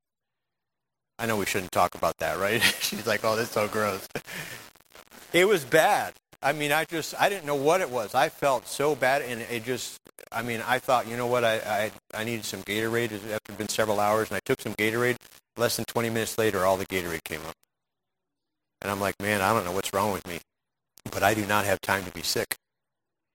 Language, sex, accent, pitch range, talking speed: English, male, American, 100-125 Hz, 225 wpm